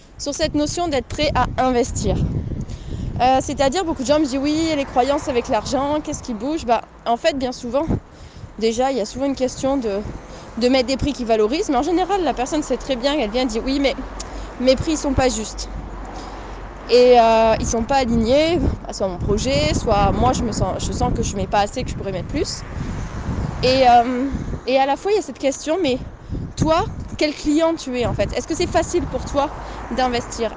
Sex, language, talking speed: female, French, 220 wpm